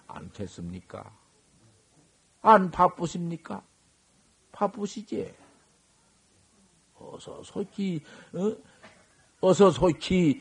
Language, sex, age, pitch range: Korean, male, 50-69, 150-220 Hz